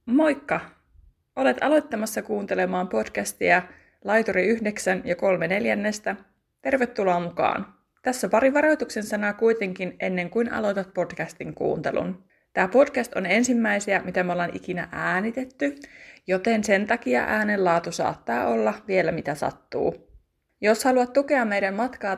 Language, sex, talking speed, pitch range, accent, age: Finnish, female, 120 wpm, 180-235 Hz, native, 20-39